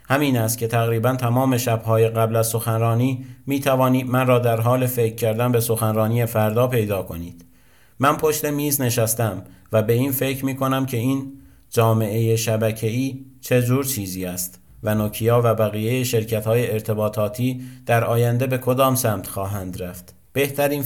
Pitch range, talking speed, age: 110-130 Hz, 160 wpm, 50-69